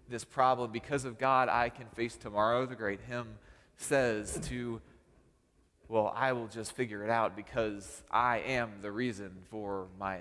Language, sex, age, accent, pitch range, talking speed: English, male, 30-49, American, 100-145 Hz, 165 wpm